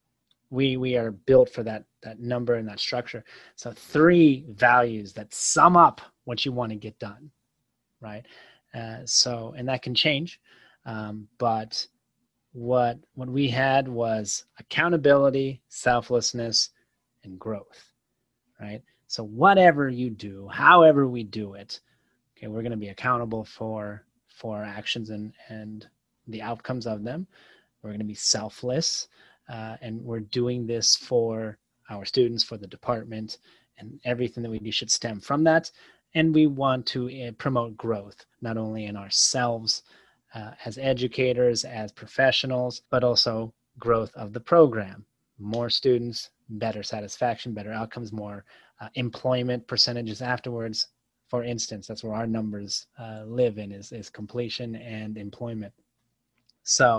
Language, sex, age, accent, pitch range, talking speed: English, male, 30-49, American, 110-125 Hz, 140 wpm